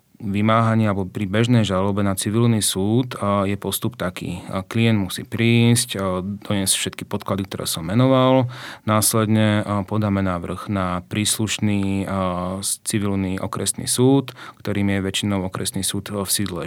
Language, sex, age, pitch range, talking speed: Slovak, male, 30-49, 100-115 Hz, 125 wpm